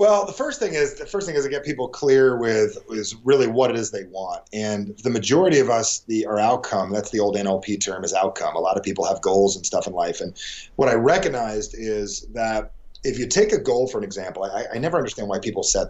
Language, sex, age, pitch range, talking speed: English, male, 30-49, 105-140 Hz, 245 wpm